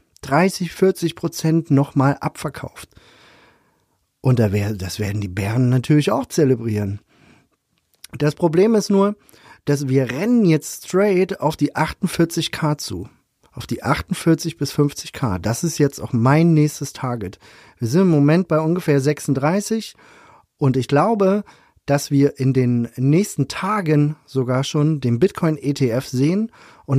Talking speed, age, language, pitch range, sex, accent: 140 wpm, 40-59, German, 130-175 Hz, male, German